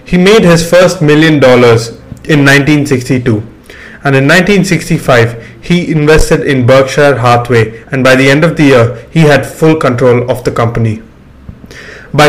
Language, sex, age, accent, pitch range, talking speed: English, male, 30-49, Indian, 115-150 Hz, 150 wpm